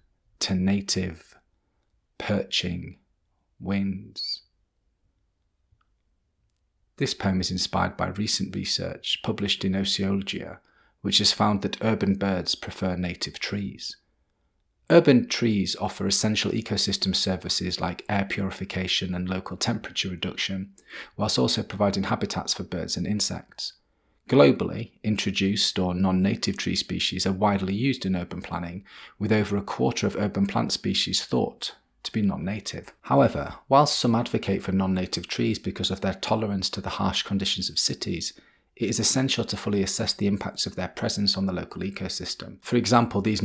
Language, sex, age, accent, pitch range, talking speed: English, male, 30-49, British, 95-105 Hz, 140 wpm